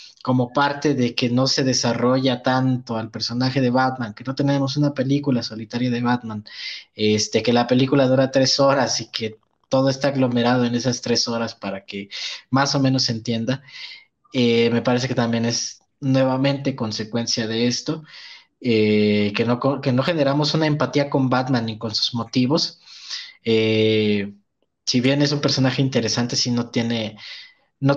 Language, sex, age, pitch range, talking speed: Spanish, male, 20-39, 115-135 Hz, 165 wpm